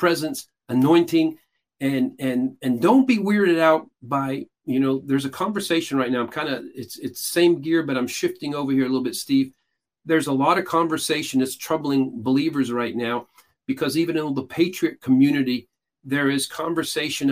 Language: English